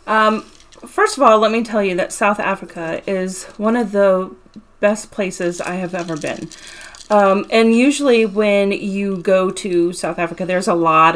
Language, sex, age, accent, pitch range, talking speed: English, female, 30-49, American, 175-205 Hz, 175 wpm